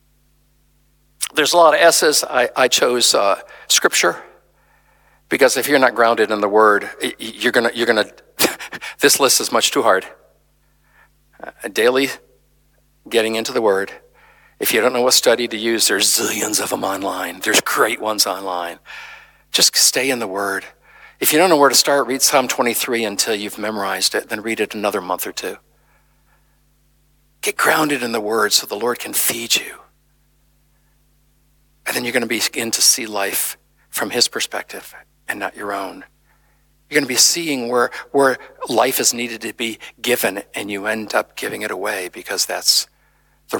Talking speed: 175 wpm